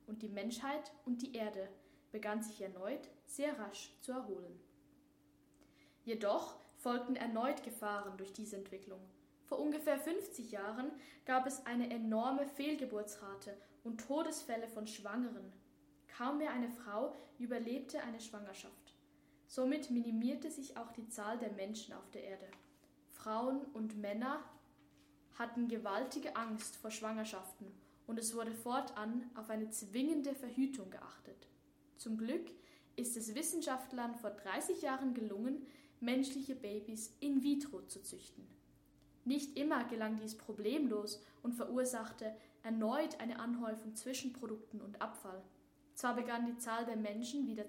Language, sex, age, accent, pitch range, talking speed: English, female, 10-29, German, 220-275 Hz, 130 wpm